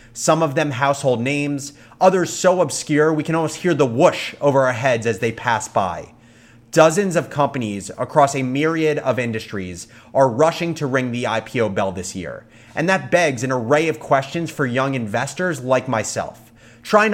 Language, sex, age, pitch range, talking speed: English, male, 30-49, 120-160 Hz, 180 wpm